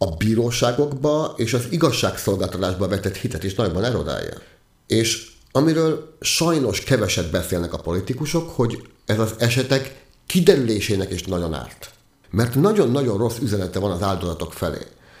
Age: 50-69